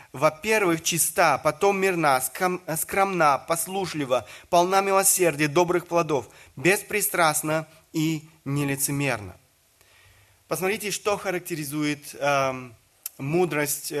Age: 30-49